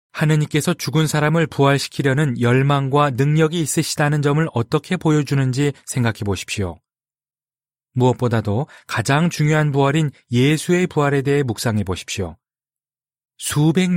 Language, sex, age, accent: Korean, male, 30-49, native